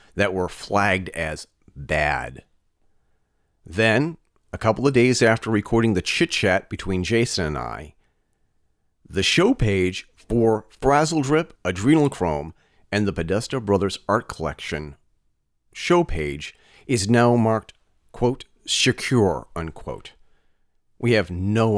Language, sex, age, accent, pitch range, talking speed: English, male, 40-59, American, 90-125 Hz, 120 wpm